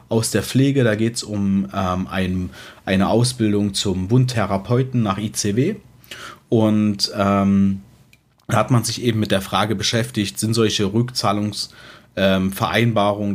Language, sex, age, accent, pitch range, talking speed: German, male, 40-59, German, 100-120 Hz, 130 wpm